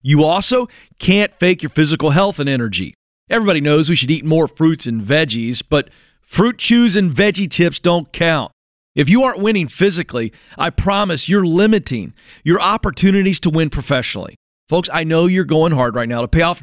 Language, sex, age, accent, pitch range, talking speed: English, male, 40-59, American, 150-205 Hz, 185 wpm